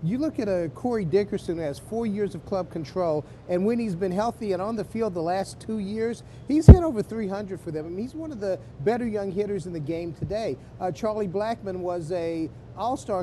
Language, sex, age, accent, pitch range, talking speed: English, male, 40-59, American, 170-210 Hz, 230 wpm